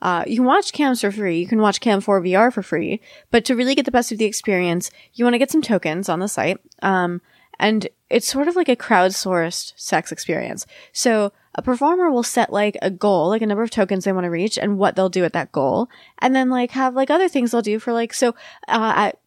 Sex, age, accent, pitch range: female, 20-39, American, 195-245 Hz